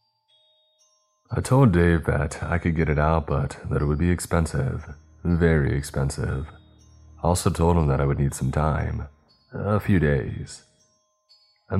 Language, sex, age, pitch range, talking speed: English, male, 30-49, 75-95 Hz, 160 wpm